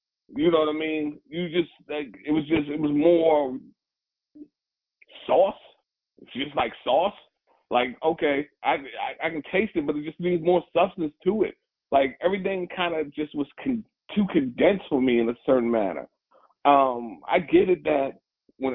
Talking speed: 180 wpm